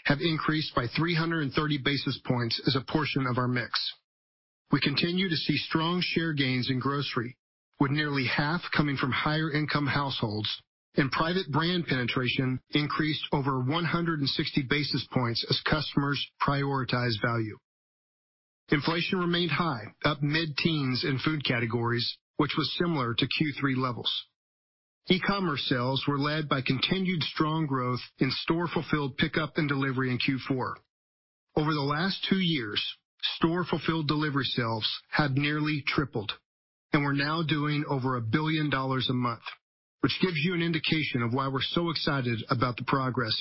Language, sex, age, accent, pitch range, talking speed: English, male, 40-59, American, 130-160 Hz, 145 wpm